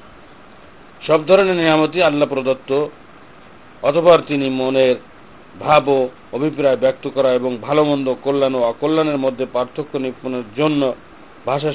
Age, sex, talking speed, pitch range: 50-69, male, 110 wpm, 125-150 Hz